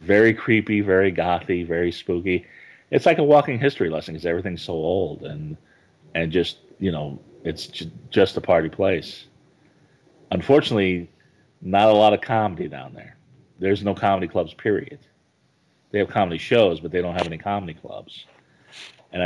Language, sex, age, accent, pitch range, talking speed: English, male, 30-49, American, 85-100 Hz, 160 wpm